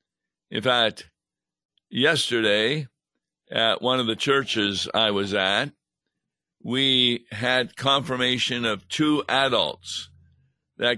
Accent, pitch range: American, 105-130 Hz